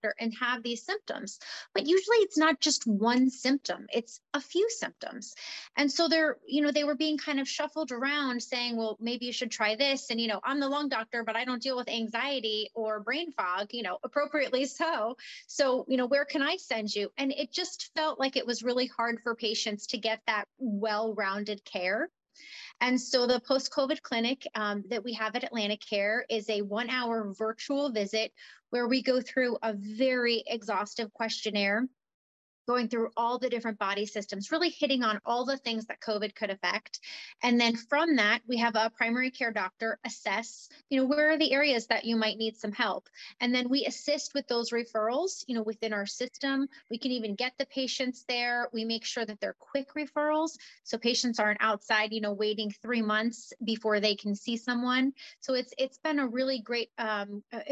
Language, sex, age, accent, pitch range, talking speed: English, female, 30-49, American, 220-275 Hz, 200 wpm